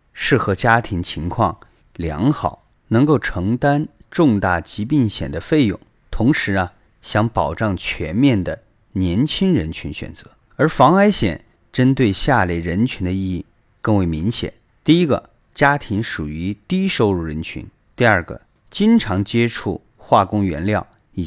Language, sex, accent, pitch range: Chinese, male, native, 90-130 Hz